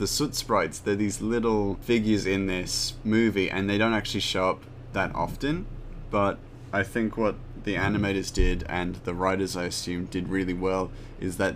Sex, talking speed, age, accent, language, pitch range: male, 180 wpm, 20-39, Australian, English, 90-105 Hz